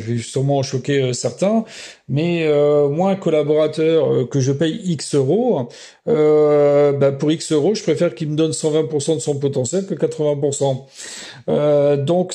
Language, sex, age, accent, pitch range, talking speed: French, male, 40-59, French, 135-160 Hz, 165 wpm